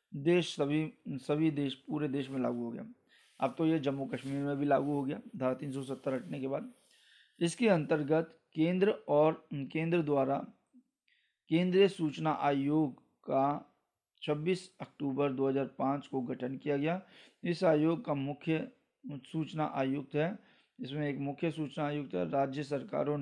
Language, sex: Hindi, male